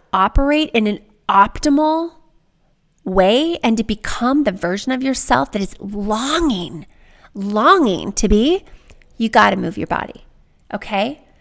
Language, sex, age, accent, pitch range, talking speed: English, female, 30-49, American, 205-285 Hz, 130 wpm